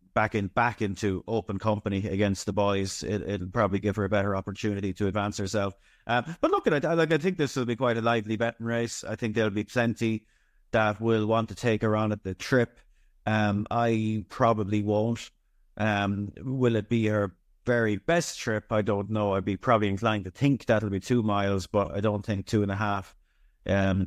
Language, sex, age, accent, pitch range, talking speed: English, male, 30-49, Irish, 100-110 Hz, 215 wpm